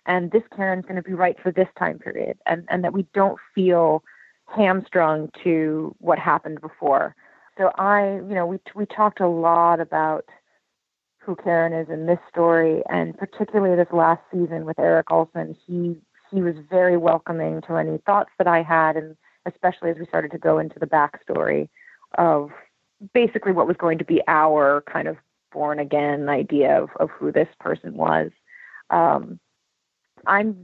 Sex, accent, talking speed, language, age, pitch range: female, American, 170 wpm, English, 30-49, 160-190 Hz